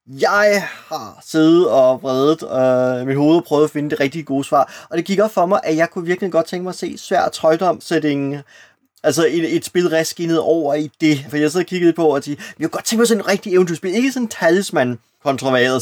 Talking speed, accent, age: 230 wpm, native, 20-39